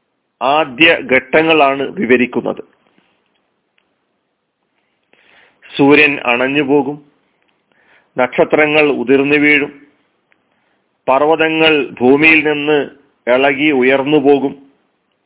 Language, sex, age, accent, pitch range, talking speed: Malayalam, male, 40-59, native, 135-160 Hz, 55 wpm